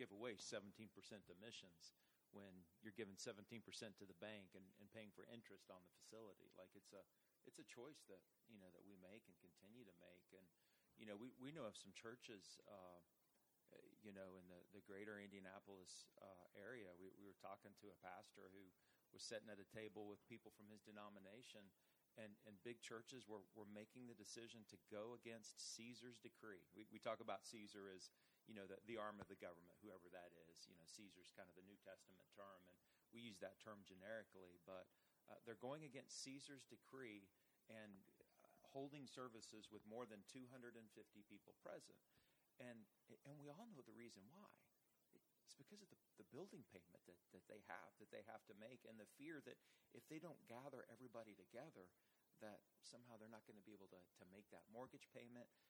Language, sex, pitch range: English, male, 95-115 Hz